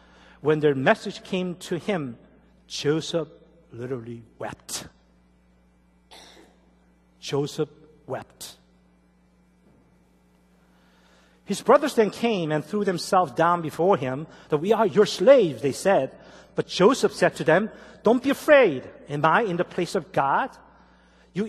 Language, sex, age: Korean, male, 50-69